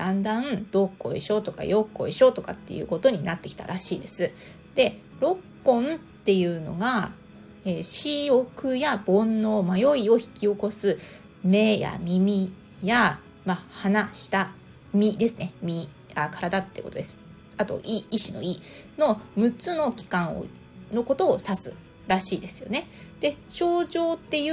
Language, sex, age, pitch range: Japanese, female, 30-49, 190-260 Hz